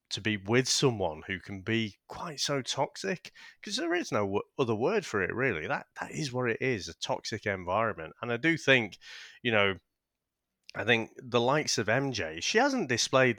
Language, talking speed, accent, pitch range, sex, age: English, 195 wpm, British, 95-125 Hz, male, 30-49